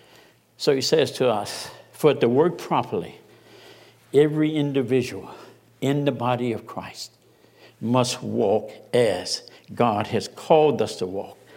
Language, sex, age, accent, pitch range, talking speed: English, male, 60-79, American, 115-150 Hz, 130 wpm